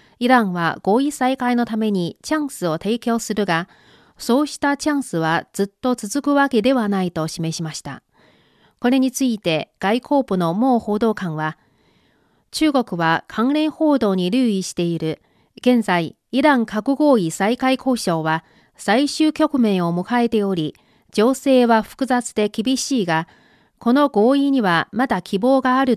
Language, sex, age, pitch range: Japanese, female, 40-59, 190-260 Hz